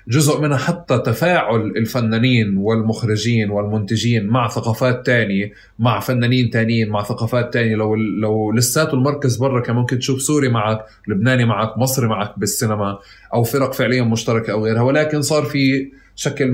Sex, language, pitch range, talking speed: male, Arabic, 105-130 Hz, 150 wpm